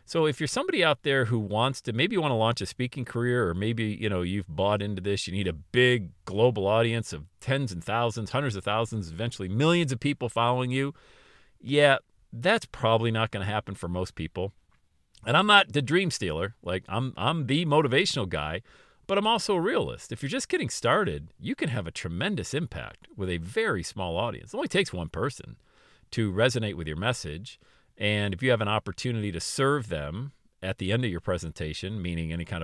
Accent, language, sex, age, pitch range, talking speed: American, English, male, 40-59, 90-125 Hz, 210 wpm